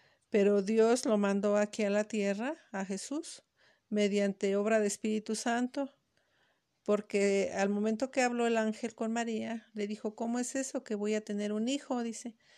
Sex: female